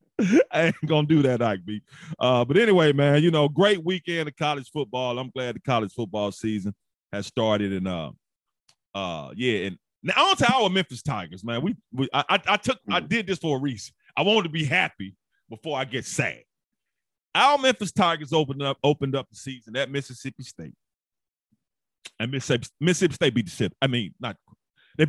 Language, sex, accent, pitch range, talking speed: English, male, American, 120-170 Hz, 195 wpm